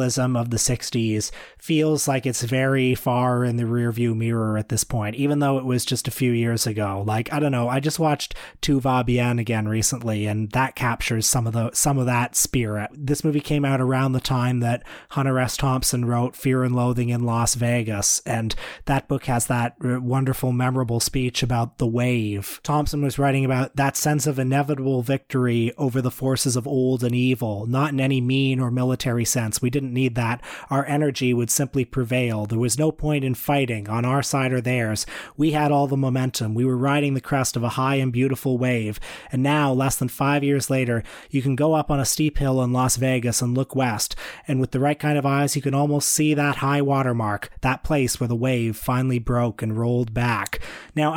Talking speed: 210 wpm